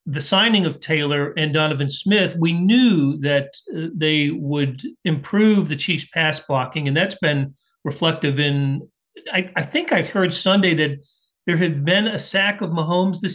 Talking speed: 170 wpm